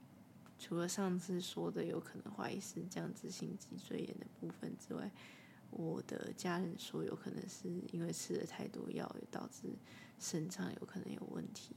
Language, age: Chinese, 20-39